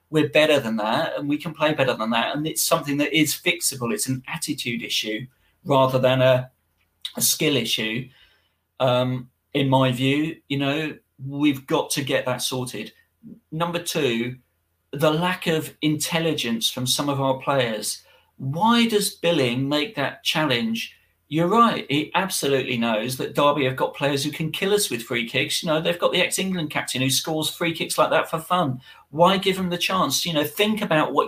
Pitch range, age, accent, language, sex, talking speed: 130-170 Hz, 40-59, British, English, male, 190 wpm